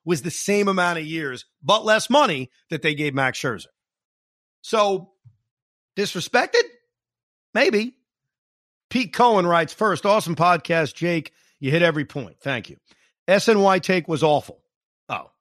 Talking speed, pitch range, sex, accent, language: 135 wpm, 150-210 Hz, male, American, English